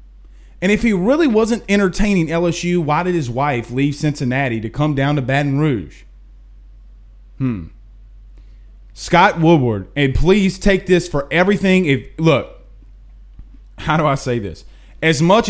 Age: 30-49